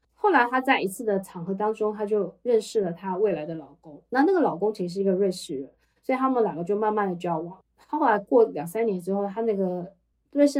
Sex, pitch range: female, 180-225 Hz